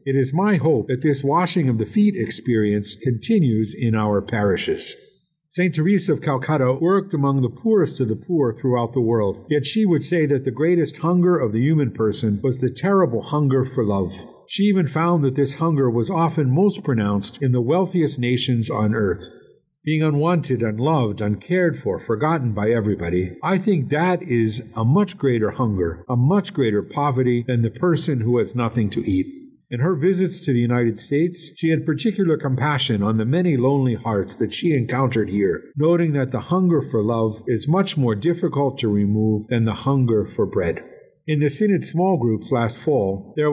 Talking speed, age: 185 wpm, 50-69